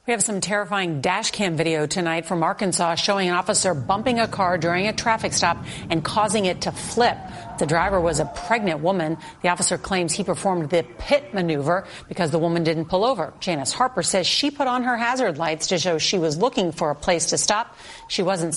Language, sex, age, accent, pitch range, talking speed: English, female, 40-59, American, 170-210 Hz, 215 wpm